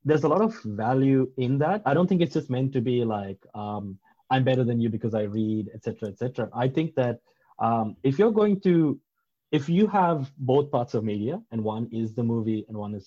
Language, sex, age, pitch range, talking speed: English, male, 20-39, 120-150 Hz, 235 wpm